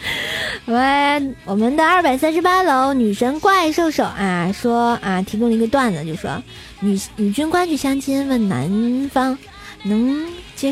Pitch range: 220-290 Hz